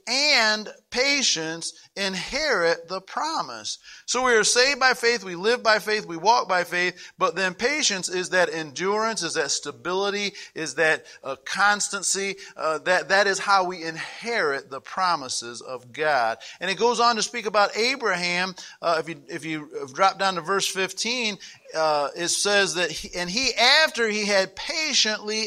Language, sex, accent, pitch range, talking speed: English, male, American, 180-260 Hz, 170 wpm